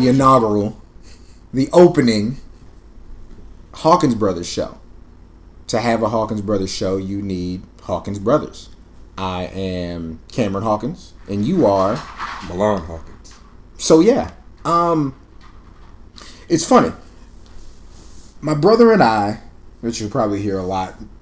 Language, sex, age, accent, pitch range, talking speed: English, male, 30-49, American, 90-120 Hz, 115 wpm